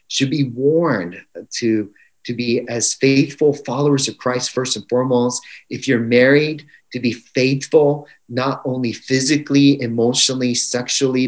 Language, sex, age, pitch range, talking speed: English, male, 30-49, 115-140 Hz, 135 wpm